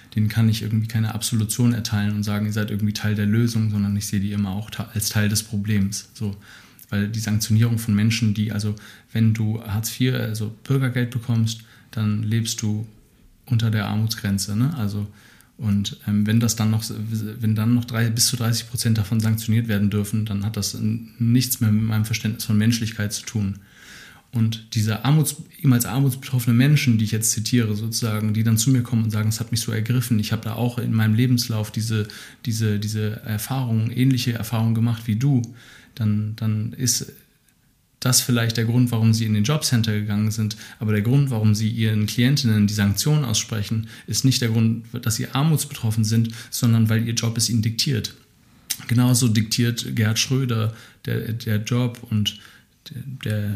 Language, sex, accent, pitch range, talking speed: German, male, German, 105-120 Hz, 185 wpm